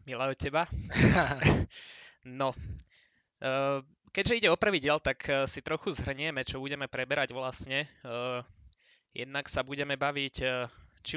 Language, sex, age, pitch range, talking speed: Slovak, male, 20-39, 130-140 Hz, 120 wpm